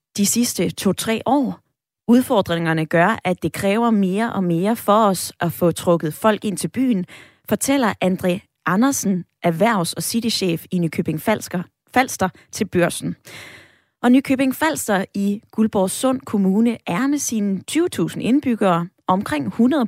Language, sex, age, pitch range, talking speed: Danish, female, 20-39, 180-245 Hz, 140 wpm